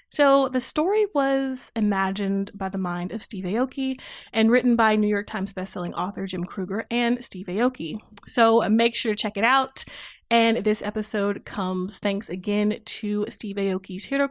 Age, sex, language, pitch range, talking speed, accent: 20-39, female, English, 190-245 Hz, 170 wpm, American